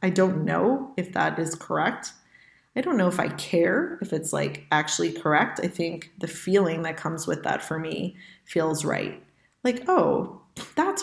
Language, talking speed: English, 180 wpm